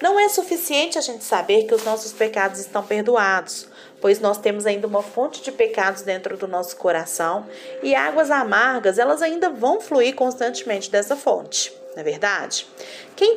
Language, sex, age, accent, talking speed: Portuguese, female, 40-59, Brazilian, 170 wpm